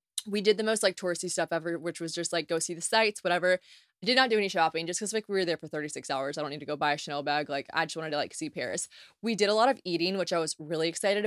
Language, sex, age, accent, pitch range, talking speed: English, female, 20-39, American, 170-220 Hz, 320 wpm